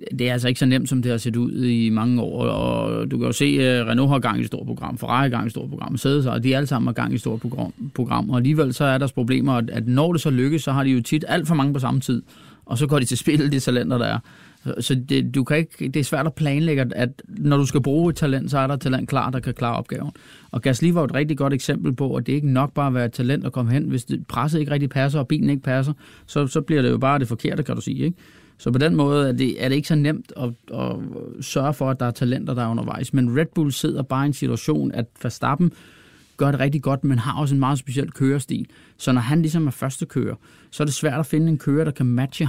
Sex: male